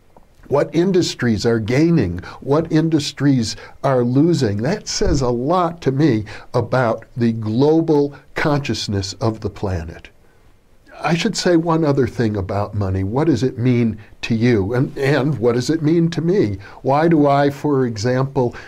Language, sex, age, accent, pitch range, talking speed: English, male, 60-79, American, 115-155 Hz, 155 wpm